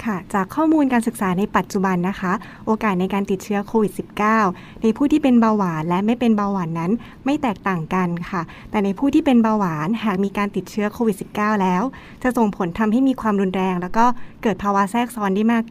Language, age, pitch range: Thai, 20-39, 200-240 Hz